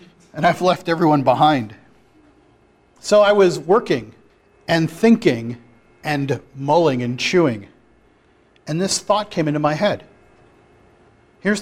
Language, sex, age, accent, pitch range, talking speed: English, male, 40-59, American, 150-225 Hz, 120 wpm